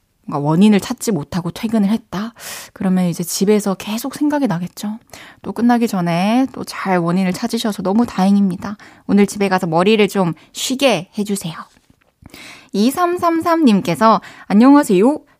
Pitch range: 185-255 Hz